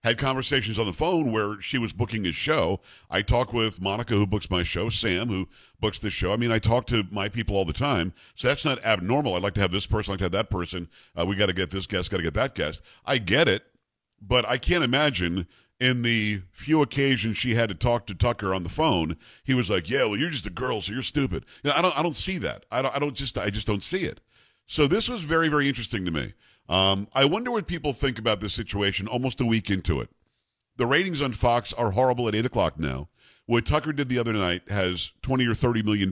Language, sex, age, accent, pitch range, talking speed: English, male, 50-69, American, 95-130 Hz, 255 wpm